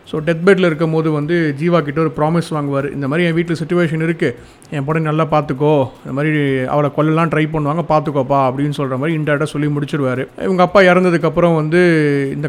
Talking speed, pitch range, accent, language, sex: 185 wpm, 145-170 Hz, native, Tamil, male